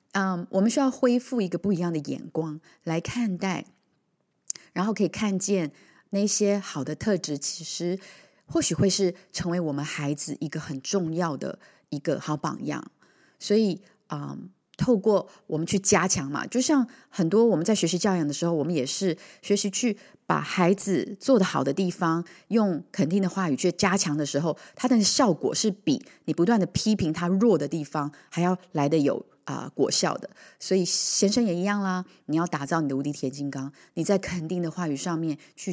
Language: Chinese